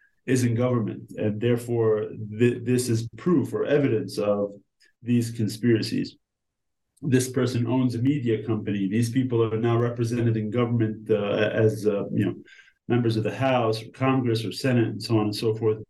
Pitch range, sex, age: 110-125 Hz, male, 30-49